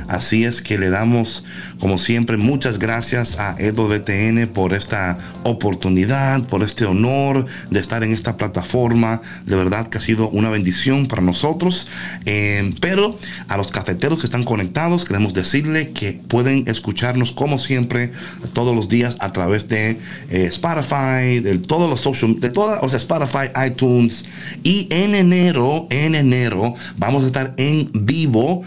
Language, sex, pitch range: Spanish, male, 105-140 Hz